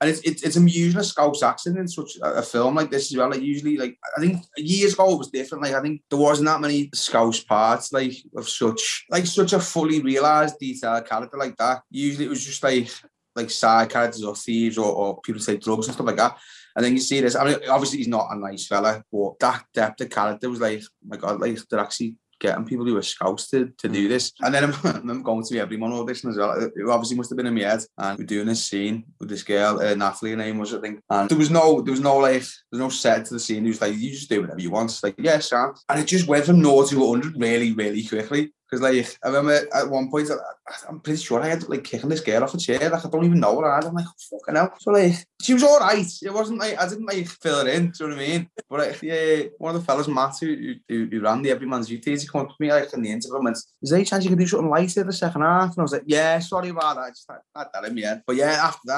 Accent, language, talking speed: British, English, 290 wpm